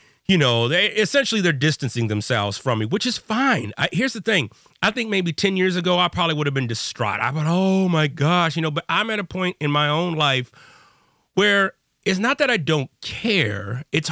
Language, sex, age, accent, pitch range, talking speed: English, male, 30-49, American, 135-195 Hz, 220 wpm